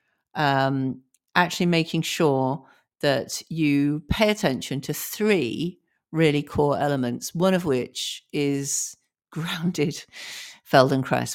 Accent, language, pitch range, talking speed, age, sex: British, English, 125-165 Hz, 100 wpm, 50-69, female